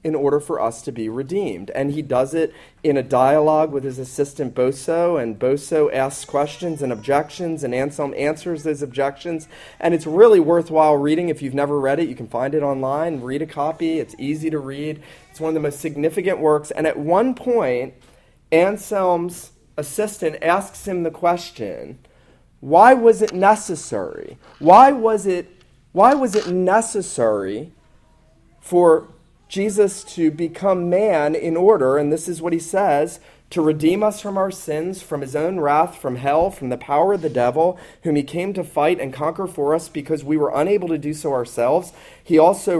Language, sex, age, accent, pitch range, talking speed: English, male, 40-59, American, 145-190 Hz, 180 wpm